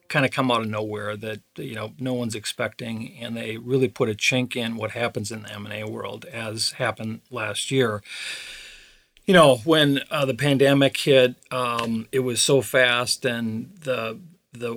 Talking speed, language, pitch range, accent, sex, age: 180 wpm, English, 110-130 Hz, American, male, 40-59